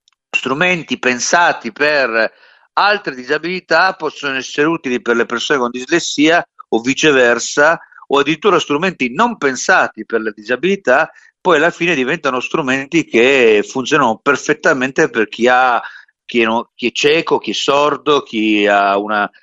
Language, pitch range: Italian, 115-165 Hz